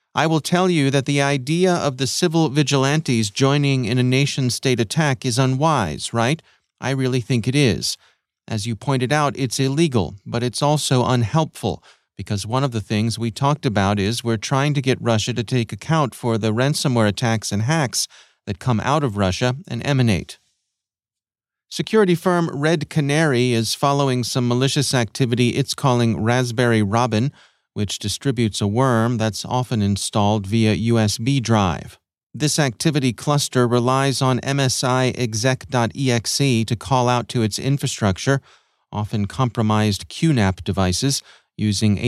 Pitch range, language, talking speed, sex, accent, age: 110-135 Hz, English, 150 wpm, male, American, 40-59